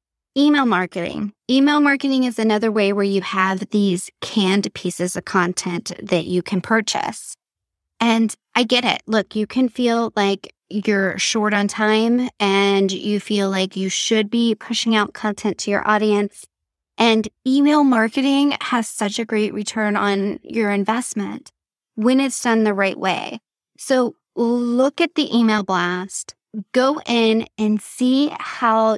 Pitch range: 205-245 Hz